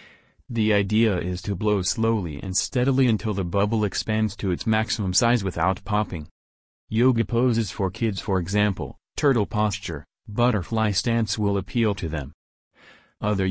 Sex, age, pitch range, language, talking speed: male, 40-59, 90-110 Hz, English, 145 wpm